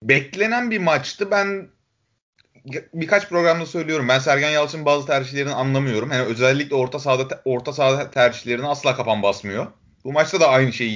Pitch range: 135-190 Hz